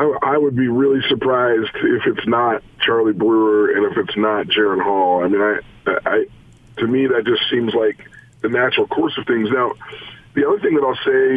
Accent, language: American, English